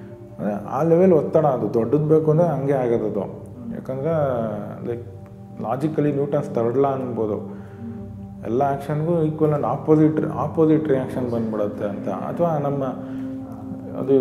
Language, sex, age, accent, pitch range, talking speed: Kannada, male, 30-49, native, 110-140 Hz, 120 wpm